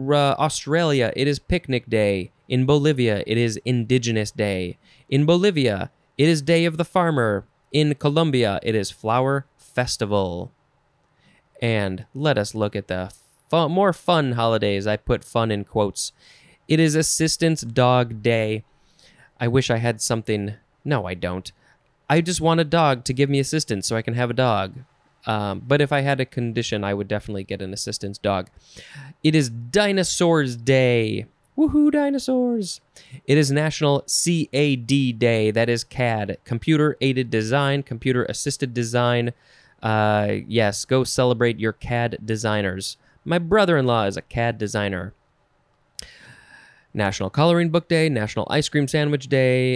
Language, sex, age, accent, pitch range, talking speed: English, male, 20-39, American, 110-145 Hz, 150 wpm